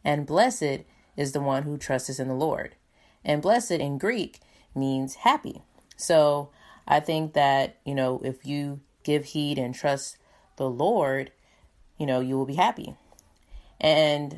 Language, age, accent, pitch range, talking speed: English, 20-39, American, 130-150 Hz, 155 wpm